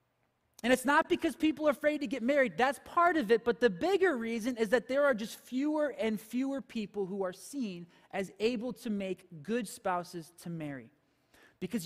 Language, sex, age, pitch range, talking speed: English, male, 20-39, 200-245 Hz, 195 wpm